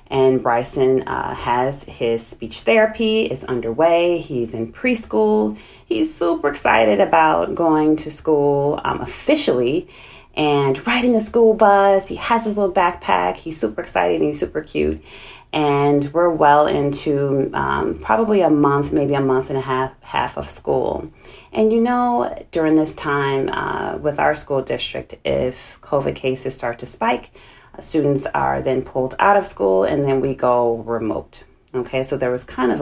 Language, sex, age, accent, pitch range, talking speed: English, female, 30-49, American, 125-155 Hz, 165 wpm